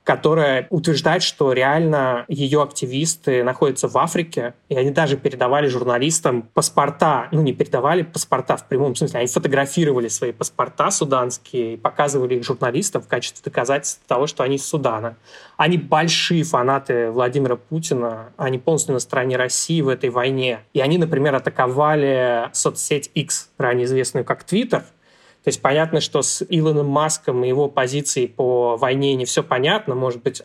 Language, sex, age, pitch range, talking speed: Russian, male, 20-39, 130-155 Hz, 155 wpm